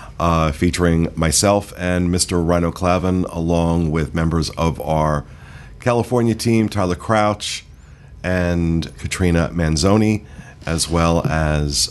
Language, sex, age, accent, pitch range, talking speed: English, male, 50-69, American, 80-100 Hz, 110 wpm